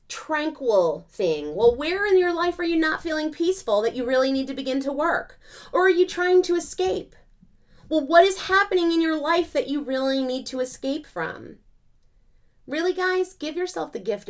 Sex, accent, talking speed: female, American, 195 wpm